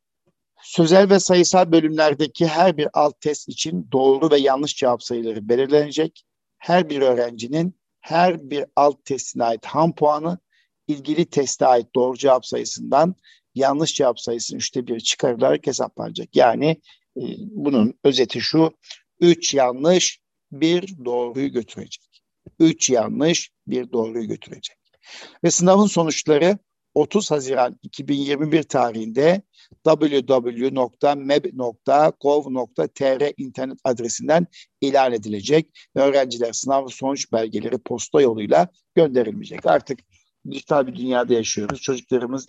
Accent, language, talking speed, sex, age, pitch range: native, Turkish, 110 wpm, male, 60-79, 130-160 Hz